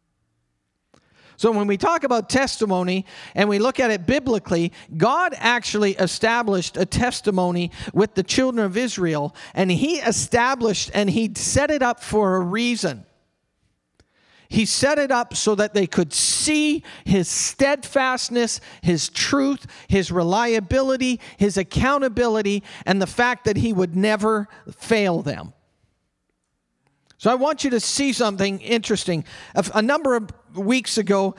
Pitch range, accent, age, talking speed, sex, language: 190-245 Hz, American, 40-59, 140 wpm, male, English